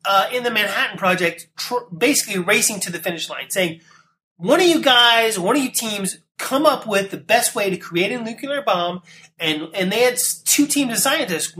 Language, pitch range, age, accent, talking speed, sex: English, 160-215 Hz, 30-49, American, 210 wpm, male